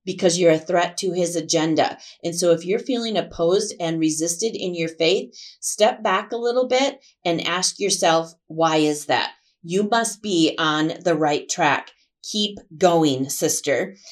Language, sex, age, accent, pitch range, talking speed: English, female, 30-49, American, 160-190 Hz, 165 wpm